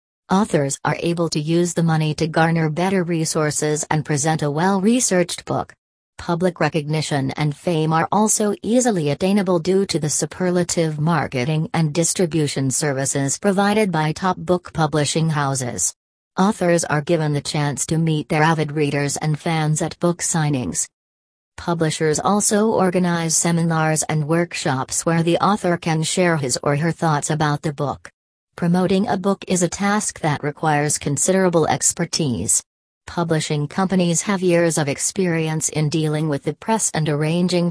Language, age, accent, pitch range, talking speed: English, 40-59, American, 150-180 Hz, 150 wpm